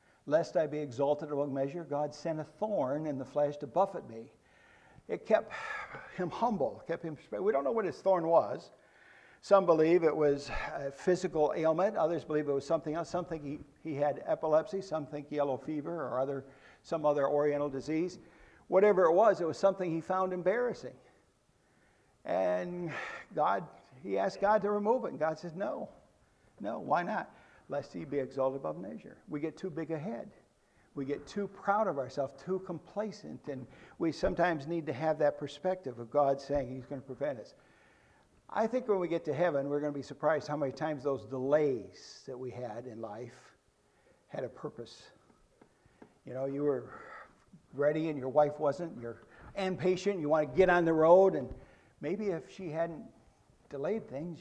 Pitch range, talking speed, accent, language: 140-175 Hz, 180 wpm, American, English